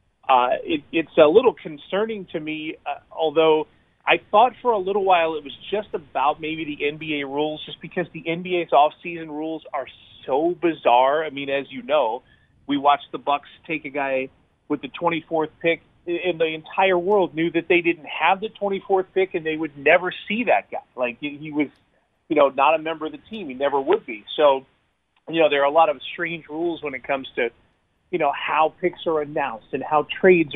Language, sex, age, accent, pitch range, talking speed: English, male, 30-49, American, 145-180 Hz, 210 wpm